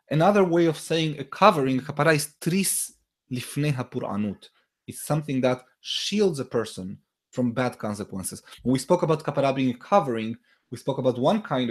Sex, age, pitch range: male, 20-39, 120-160 Hz